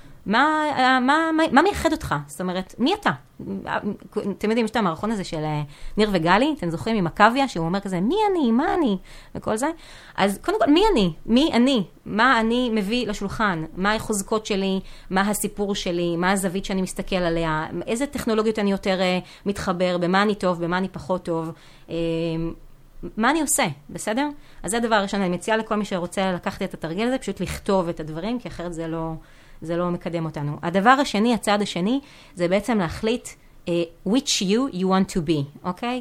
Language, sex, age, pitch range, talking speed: Hebrew, female, 30-49, 175-230 Hz, 175 wpm